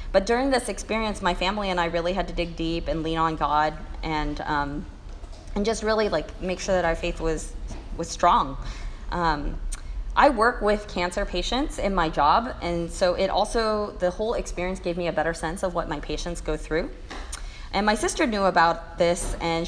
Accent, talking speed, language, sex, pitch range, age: American, 200 wpm, English, female, 160-200 Hz, 30-49